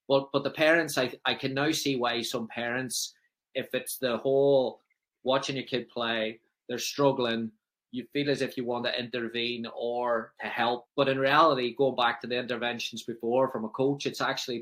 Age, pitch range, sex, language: 20-39, 120-140 Hz, male, English